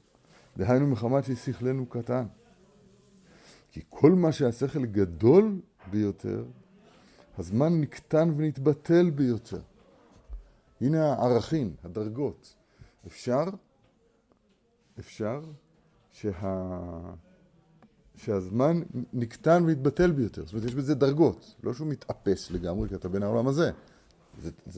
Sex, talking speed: male, 95 wpm